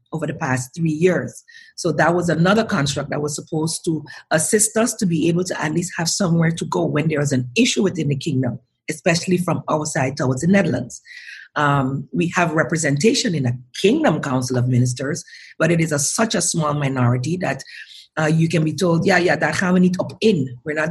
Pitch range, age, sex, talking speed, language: 150-195 Hz, 40-59, female, 215 wpm, Dutch